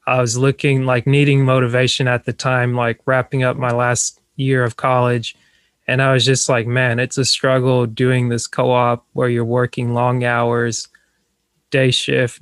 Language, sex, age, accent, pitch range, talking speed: English, male, 20-39, American, 120-135 Hz, 175 wpm